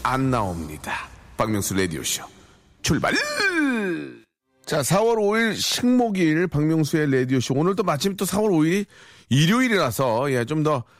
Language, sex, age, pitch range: Korean, male, 40-59, 110-170 Hz